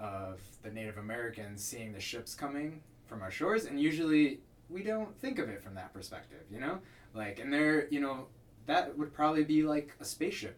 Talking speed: 200 wpm